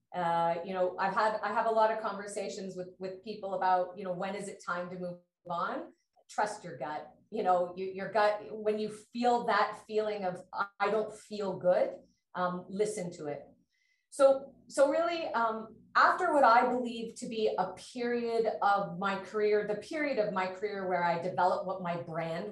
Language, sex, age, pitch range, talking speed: English, female, 30-49, 180-235 Hz, 190 wpm